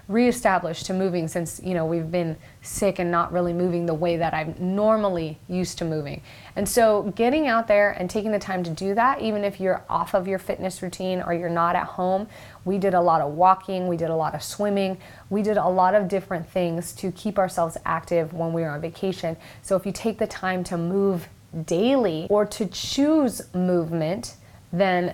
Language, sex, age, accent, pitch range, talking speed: English, female, 30-49, American, 170-195 Hz, 210 wpm